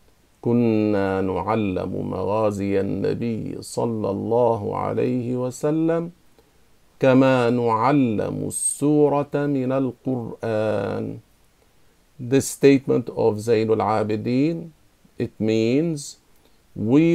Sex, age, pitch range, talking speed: male, 50-69, 110-140 Hz, 75 wpm